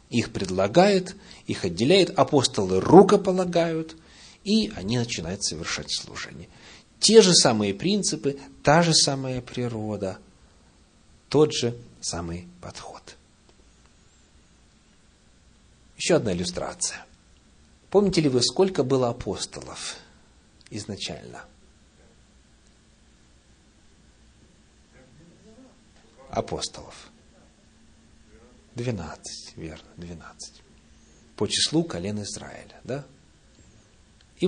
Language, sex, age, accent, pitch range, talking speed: Russian, male, 40-59, native, 90-145 Hz, 75 wpm